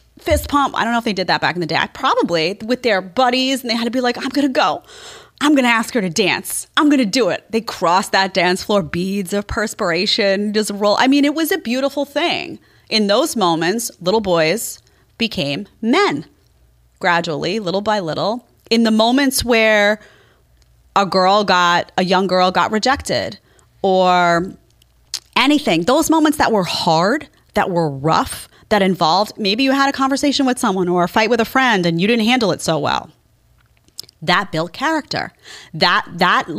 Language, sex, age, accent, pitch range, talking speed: English, female, 30-49, American, 175-245 Hz, 190 wpm